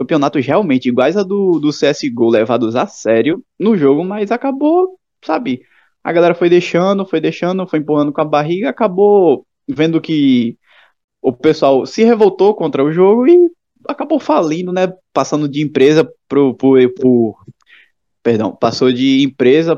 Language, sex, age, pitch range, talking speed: Portuguese, male, 20-39, 125-200 Hz, 150 wpm